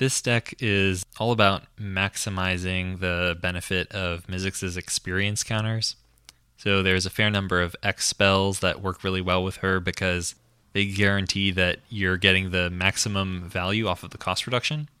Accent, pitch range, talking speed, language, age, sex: American, 90-105 Hz, 160 wpm, English, 20-39, male